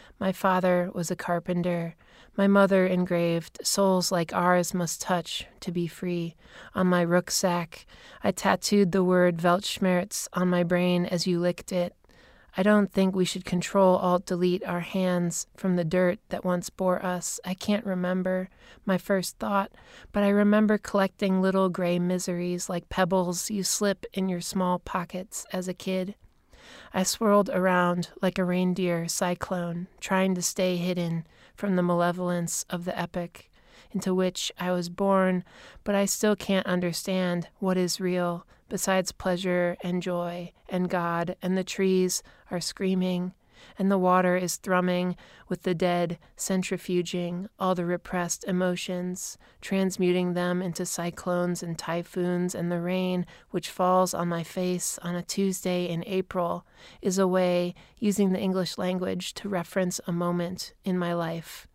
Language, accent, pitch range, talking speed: English, American, 175-190 Hz, 155 wpm